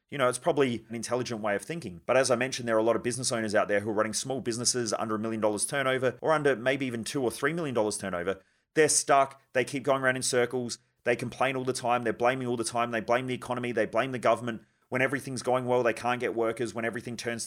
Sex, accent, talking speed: male, Australian, 270 wpm